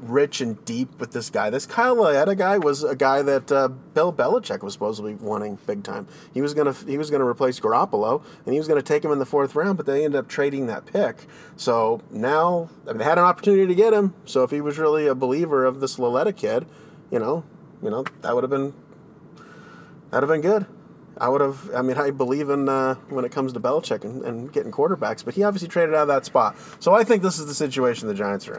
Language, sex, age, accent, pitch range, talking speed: English, male, 30-49, American, 130-165 Hz, 250 wpm